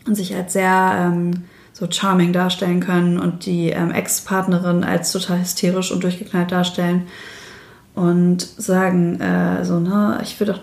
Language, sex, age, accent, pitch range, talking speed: German, female, 20-39, German, 180-210 Hz, 150 wpm